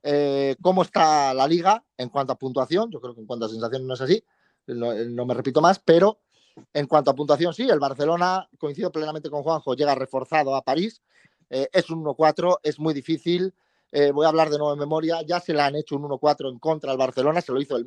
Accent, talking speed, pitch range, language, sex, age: Spanish, 235 wpm, 135-180 Hz, Spanish, male, 30-49